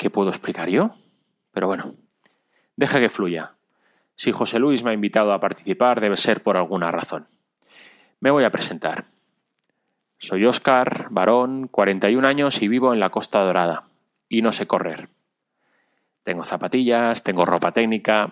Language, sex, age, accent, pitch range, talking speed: Spanish, male, 30-49, Spanish, 100-125 Hz, 150 wpm